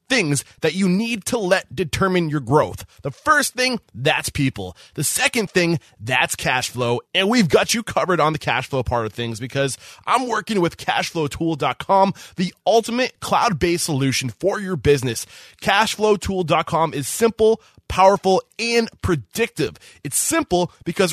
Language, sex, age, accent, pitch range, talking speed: English, male, 20-39, American, 150-215 Hz, 155 wpm